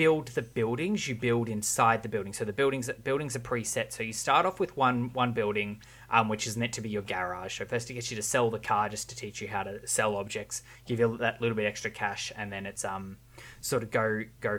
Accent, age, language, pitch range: Australian, 20-39, English, 105-125 Hz